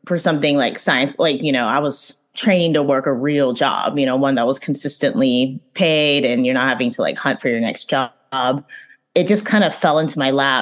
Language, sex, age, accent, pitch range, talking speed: English, female, 20-39, American, 130-180 Hz, 230 wpm